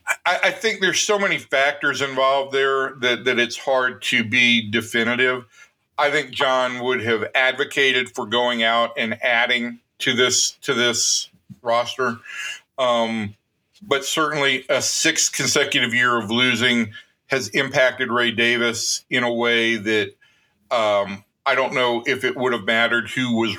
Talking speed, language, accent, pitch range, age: 150 wpm, English, American, 115-135 Hz, 50-69